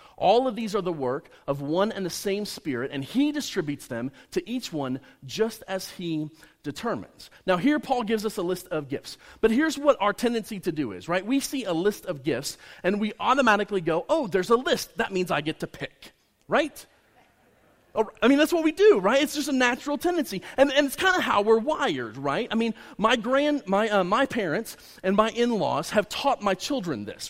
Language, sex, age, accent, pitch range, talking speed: English, male, 30-49, American, 180-265 Hz, 220 wpm